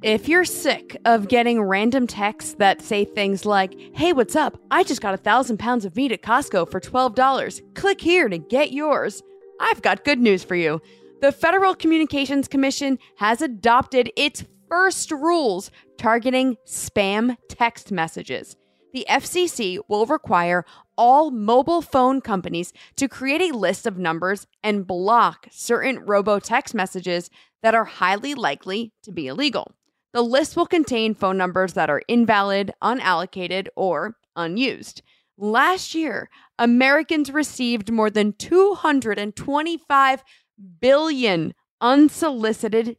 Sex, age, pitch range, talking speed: female, 20-39, 195-275 Hz, 135 wpm